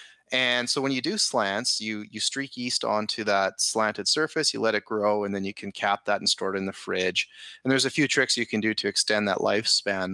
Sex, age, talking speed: male, 30-49, 250 wpm